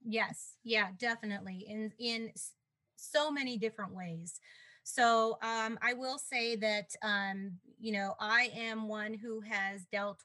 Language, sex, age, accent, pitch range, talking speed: English, female, 30-49, American, 185-215 Hz, 140 wpm